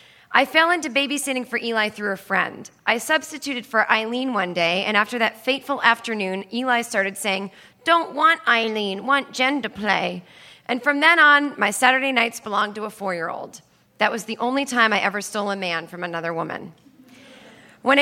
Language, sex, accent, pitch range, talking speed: English, female, American, 200-270 Hz, 185 wpm